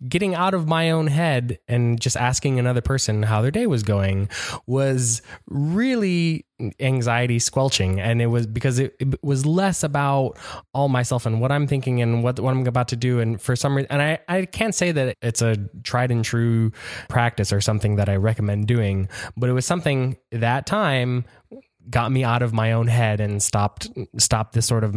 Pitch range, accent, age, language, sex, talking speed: 105-135 Hz, American, 20-39, English, male, 200 wpm